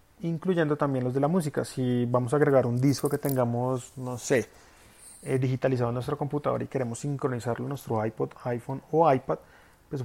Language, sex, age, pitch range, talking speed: Spanish, male, 30-49, 130-160 Hz, 185 wpm